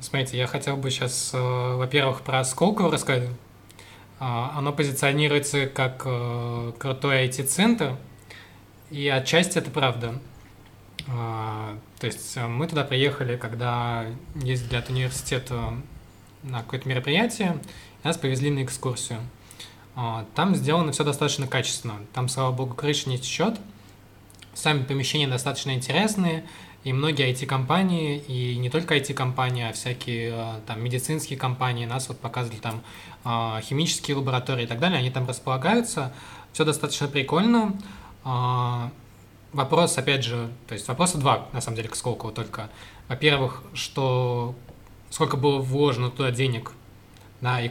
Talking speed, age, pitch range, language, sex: 120 wpm, 20-39, 115-140 Hz, Russian, male